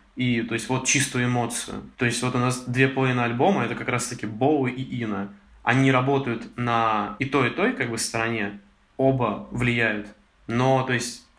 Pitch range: 115-135 Hz